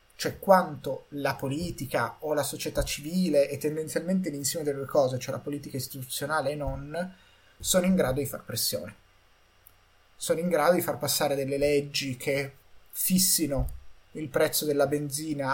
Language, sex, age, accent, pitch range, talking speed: Italian, male, 30-49, native, 130-165 Hz, 155 wpm